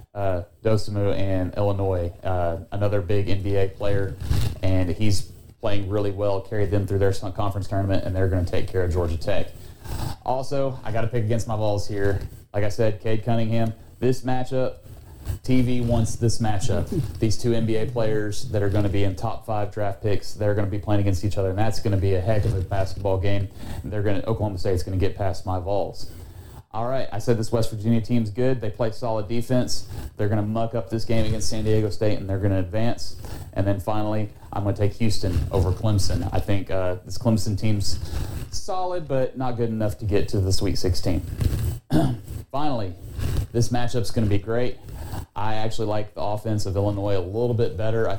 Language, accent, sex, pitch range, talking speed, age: English, American, male, 95-115 Hz, 210 wpm, 30-49